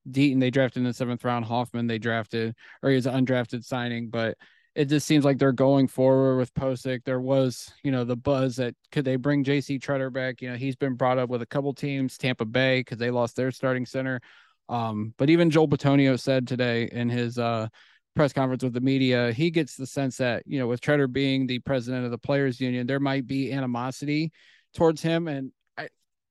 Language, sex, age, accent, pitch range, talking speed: English, male, 20-39, American, 125-140 Hz, 215 wpm